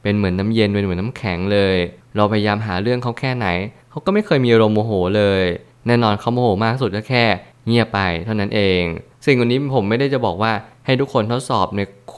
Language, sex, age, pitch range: Thai, male, 20-39, 100-120 Hz